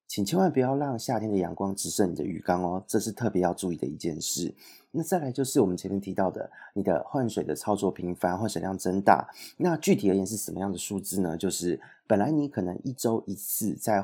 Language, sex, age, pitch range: Chinese, male, 30-49, 95-125 Hz